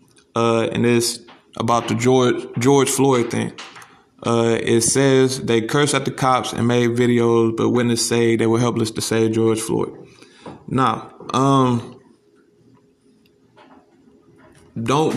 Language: English